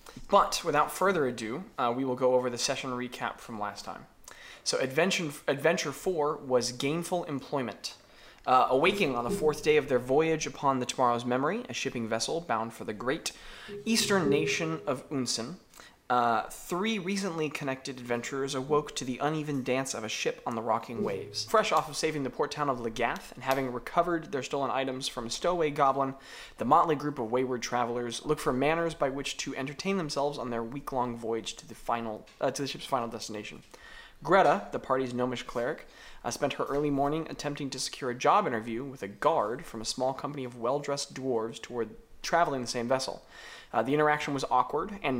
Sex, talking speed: male, 190 wpm